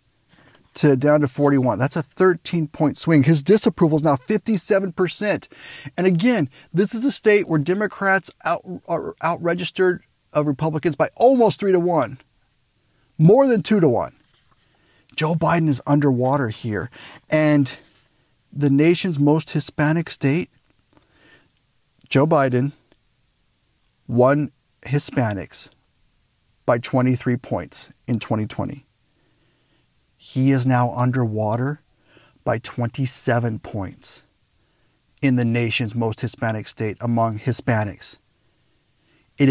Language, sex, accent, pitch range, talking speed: English, male, American, 125-165 Hz, 110 wpm